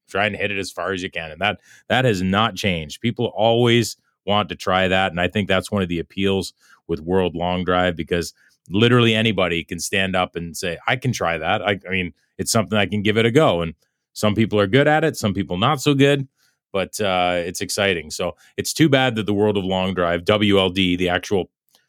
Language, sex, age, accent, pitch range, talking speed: English, male, 30-49, American, 90-115 Hz, 235 wpm